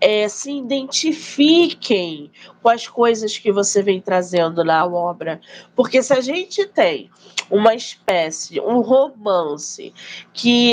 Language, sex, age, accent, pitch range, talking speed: Portuguese, female, 20-39, Brazilian, 195-265 Hz, 115 wpm